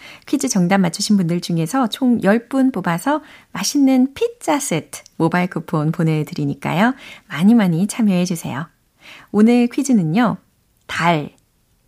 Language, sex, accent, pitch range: Korean, female, native, 175-260 Hz